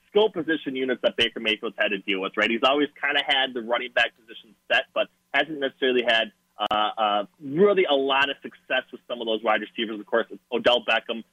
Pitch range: 110-135 Hz